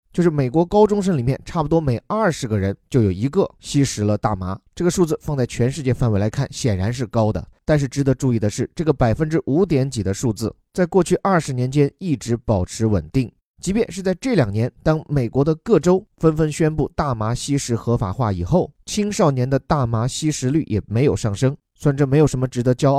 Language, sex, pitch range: Chinese, male, 115-160 Hz